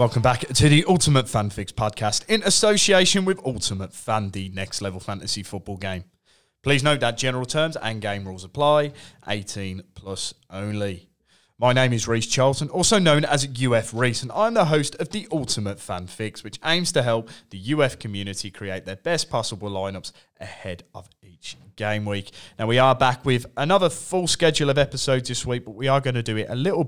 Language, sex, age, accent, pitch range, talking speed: English, male, 30-49, British, 100-130 Hz, 195 wpm